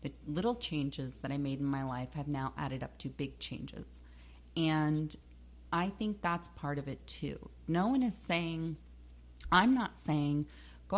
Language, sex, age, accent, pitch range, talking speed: English, female, 30-49, American, 140-210 Hz, 175 wpm